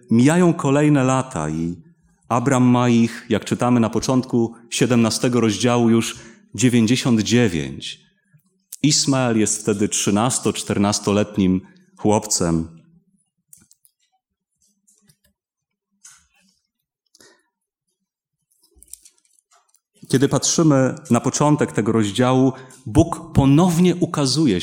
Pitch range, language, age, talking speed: 115-160 Hz, Polish, 30-49, 70 wpm